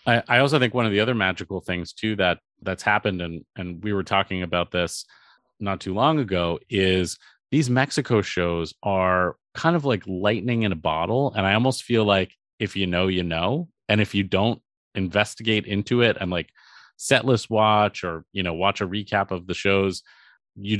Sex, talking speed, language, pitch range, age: male, 195 wpm, English, 95-110 Hz, 30-49